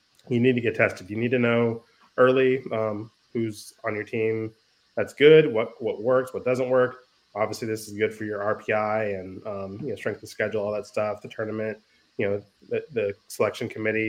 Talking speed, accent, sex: 205 wpm, American, male